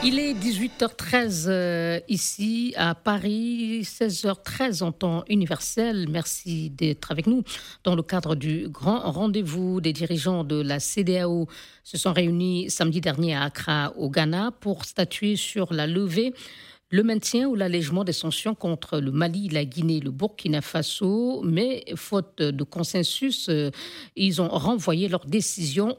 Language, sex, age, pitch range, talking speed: French, female, 50-69, 165-215 Hz, 145 wpm